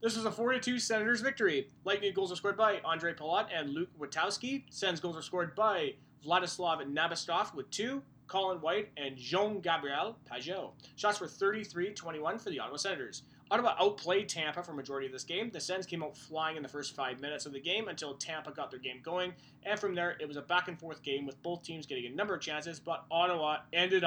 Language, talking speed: English, 210 wpm